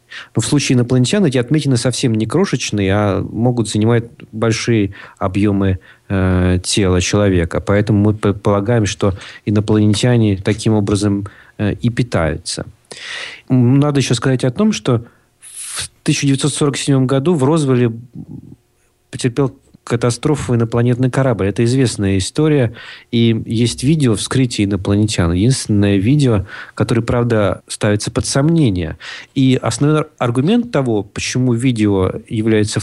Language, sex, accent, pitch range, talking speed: Russian, male, native, 105-130 Hz, 115 wpm